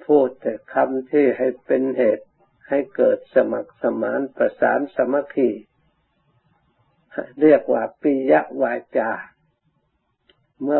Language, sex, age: Thai, male, 60-79